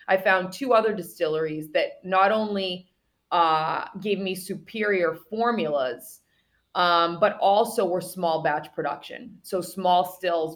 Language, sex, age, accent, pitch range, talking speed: English, female, 20-39, American, 170-195 Hz, 130 wpm